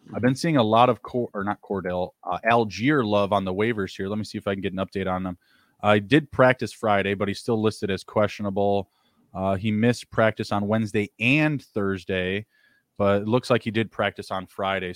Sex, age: male, 20-39